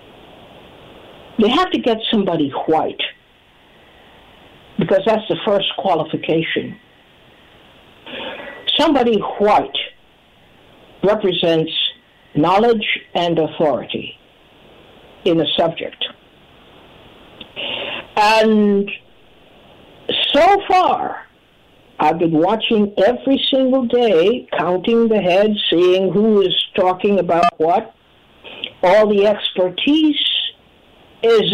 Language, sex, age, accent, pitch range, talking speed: English, female, 60-79, American, 180-245 Hz, 80 wpm